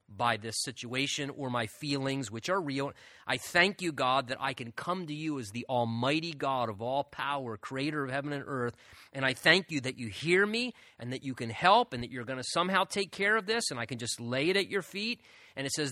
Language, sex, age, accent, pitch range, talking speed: English, male, 30-49, American, 135-185 Hz, 245 wpm